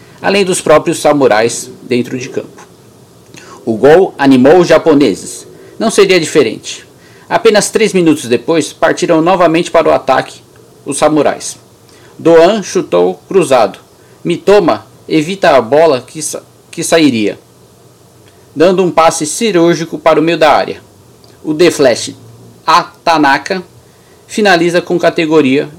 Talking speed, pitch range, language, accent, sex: 120 wpm, 135-170 Hz, Portuguese, Brazilian, male